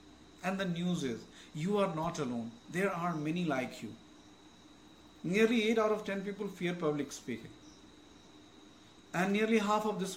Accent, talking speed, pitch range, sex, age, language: Indian, 160 wpm, 150-195 Hz, male, 50-69, English